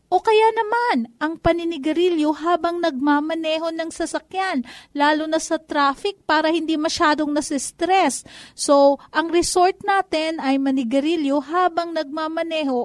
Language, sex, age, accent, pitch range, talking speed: Filipino, female, 40-59, native, 240-315 Hz, 115 wpm